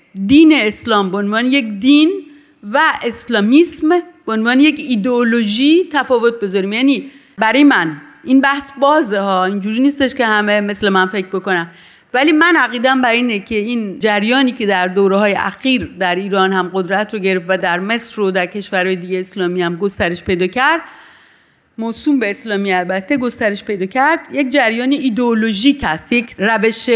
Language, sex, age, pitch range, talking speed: Persian, female, 40-59, 205-285 Hz, 165 wpm